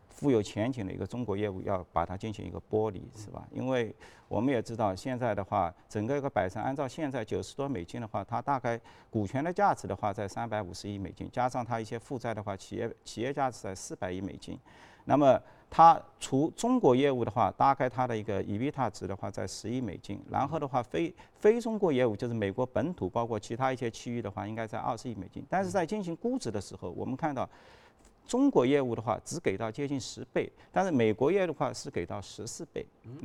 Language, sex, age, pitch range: Chinese, male, 50-69, 105-135 Hz